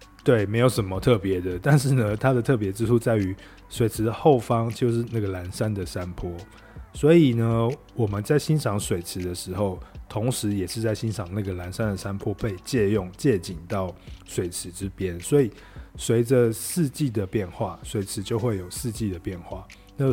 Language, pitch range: Chinese, 95-115 Hz